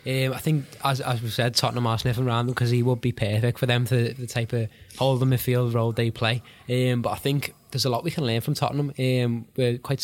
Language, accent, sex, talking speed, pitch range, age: English, British, male, 265 wpm, 110-125 Hz, 10-29